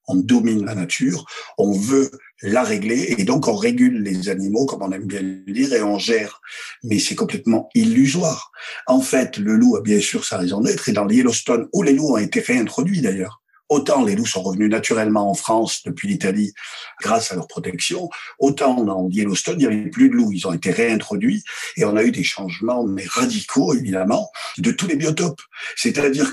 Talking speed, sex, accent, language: 205 wpm, male, French, French